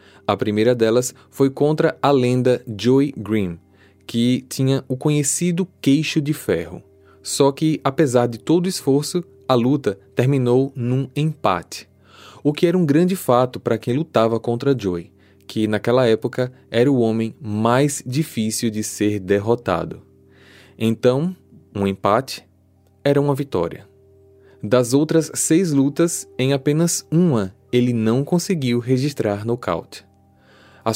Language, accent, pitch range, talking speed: Portuguese, Brazilian, 110-140 Hz, 135 wpm